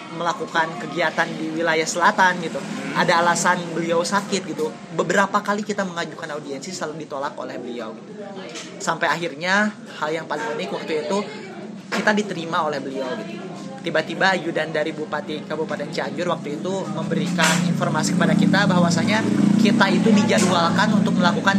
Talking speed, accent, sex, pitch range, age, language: 145 wpm, native, male, 170-205 Hz, 30-49, Indonesian